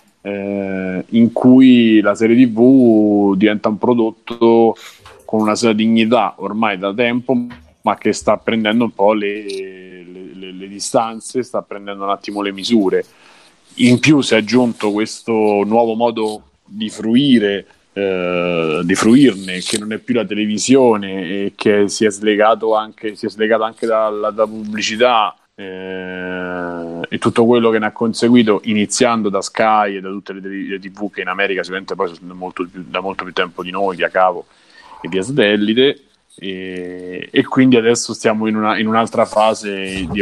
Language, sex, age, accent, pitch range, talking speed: Italian, male, 30-49, native, 95-115 Hz, 160 wpm